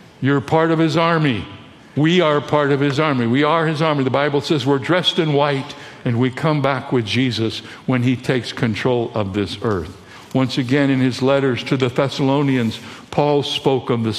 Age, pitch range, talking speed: 60-79, 125-160 Hz, 200 wpm